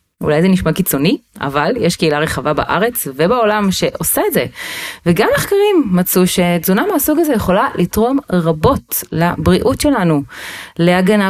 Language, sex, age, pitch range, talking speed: Hebrew, female, 30-49, 150-215 Hz, 135 wpm